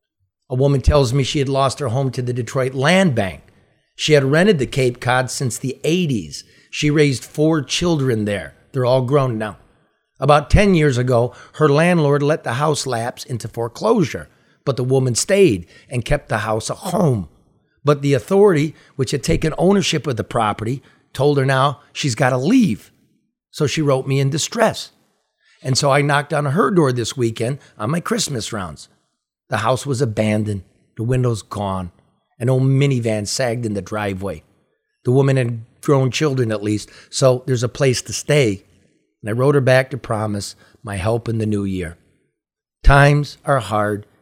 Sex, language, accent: male, English, American